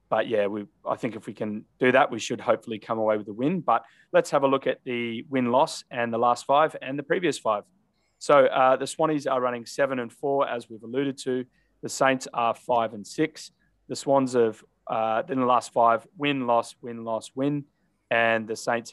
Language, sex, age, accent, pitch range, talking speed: English, male, 20-39, Australian, 105-130 Hz, 210 wpm